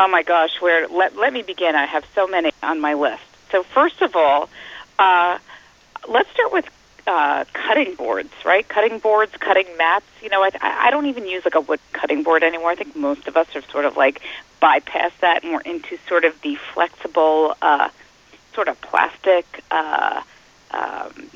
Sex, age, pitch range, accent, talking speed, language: female, 30-49, 165-260 Hz, American, 190 wpm, English